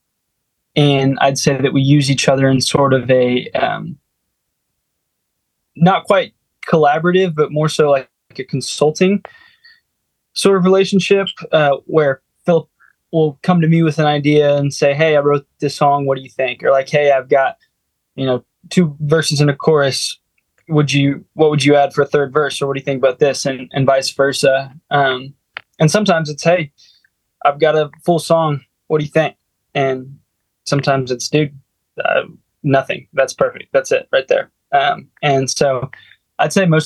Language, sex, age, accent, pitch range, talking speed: English, male, 20-39, American, 135-155 Hz, 180 wpm